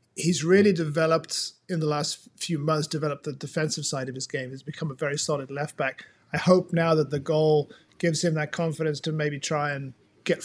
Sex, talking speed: male, 210 wpm